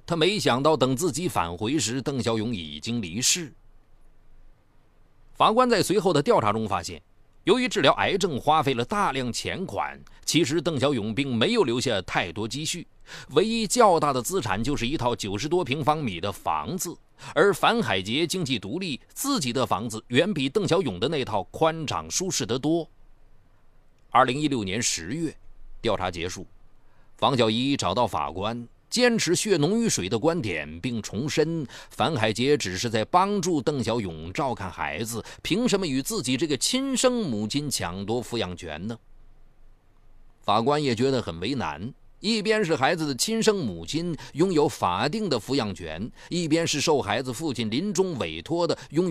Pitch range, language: 110-160 Hz, Chinese